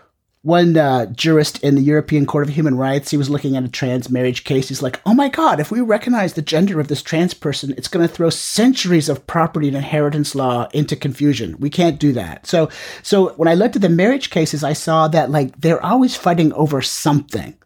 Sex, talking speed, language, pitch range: male, 220 wpm, English, 135-165 Hz